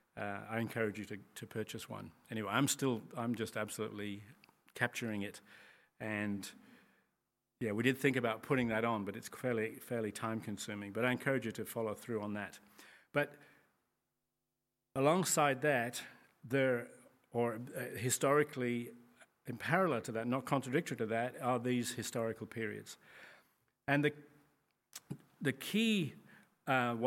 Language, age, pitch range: English, 40-59, 115-135 Hz